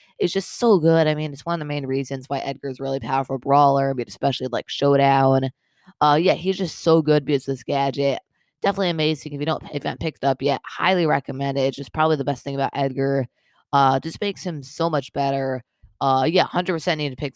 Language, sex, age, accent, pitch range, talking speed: English, female, 20-39, American, 135-160 Hz, 230 wpm